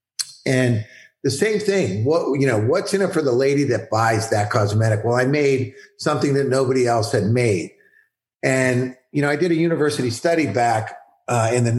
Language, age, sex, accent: English, 50-69, male, American